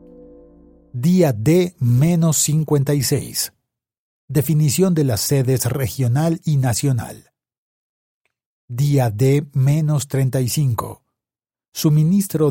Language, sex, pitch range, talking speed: Spanish, male, 125-155 Hz, 60 wpm